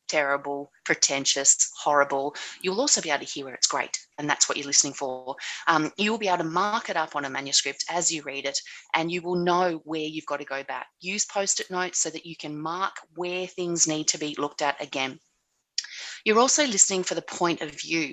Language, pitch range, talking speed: English, 155-195 Hz, 220 wpm